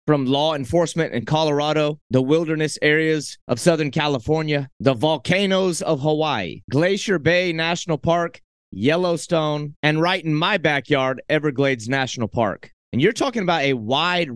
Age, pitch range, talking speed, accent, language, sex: 30-49, 135-170 Hz, 140 wpm, American, English, male